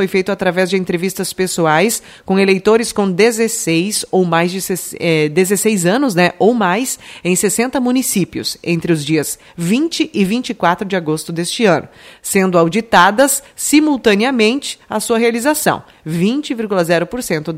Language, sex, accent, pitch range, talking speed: Portuguese, female, Brazilian, 175-230 Hz, 135 wpm